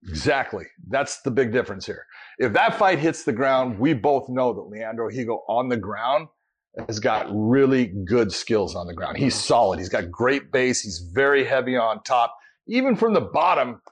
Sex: male